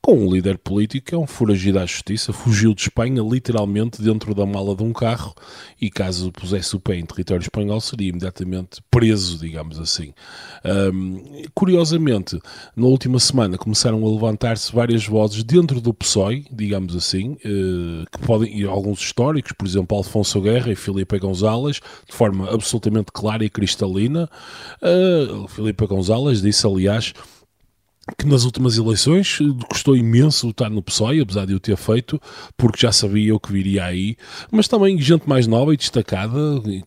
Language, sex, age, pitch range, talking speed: Portuguese, male, 20-39, 100-125 Hz, 160 wpm